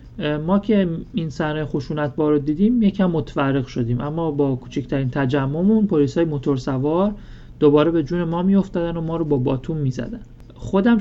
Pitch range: 135-170 Hz